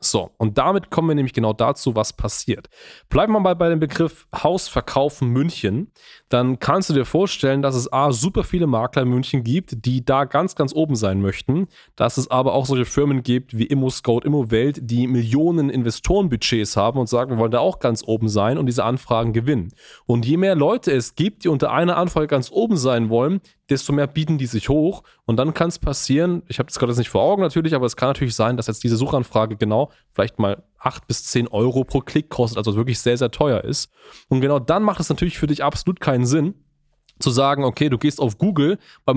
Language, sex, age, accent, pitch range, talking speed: German, male, 20-39, German, 120-155 Hz, 220 wpm